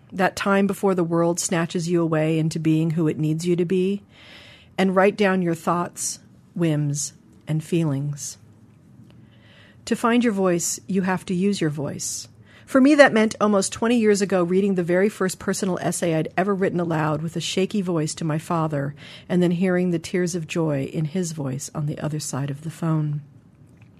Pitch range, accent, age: 150-185 Hz, American, 40-59